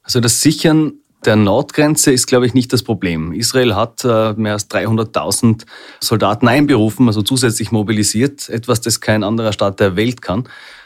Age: 30-49